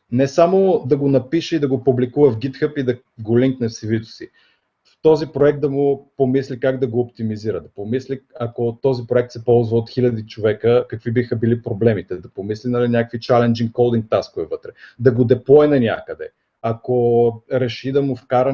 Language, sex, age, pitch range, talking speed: Bulgarian, male, 30-49, 115-140 Hz, 195 wpm